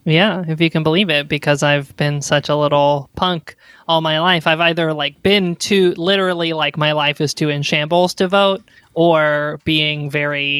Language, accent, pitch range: English, American, 145-165 Hz